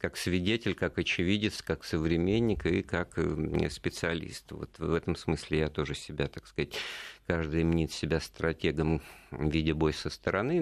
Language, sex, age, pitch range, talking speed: Russian, male, 50-69, 75-95 Hz, 155 wpm